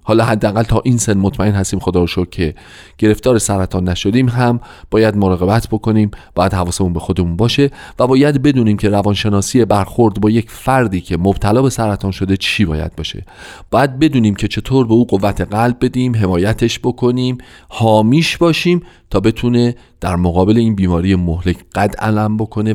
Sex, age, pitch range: male, 40-59, 90-125 Hz